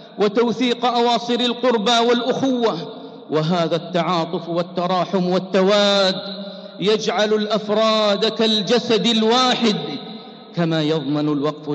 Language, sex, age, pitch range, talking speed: English, male, 50-69, 150-220 Hz, 75 wpm